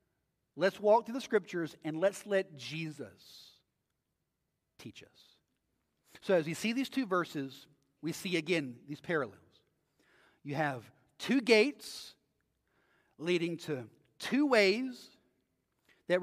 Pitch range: 135-185 Hz